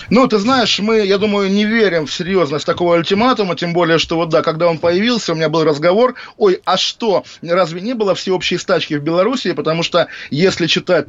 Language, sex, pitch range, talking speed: Russian, male, 165-205 Hz, 205 wpm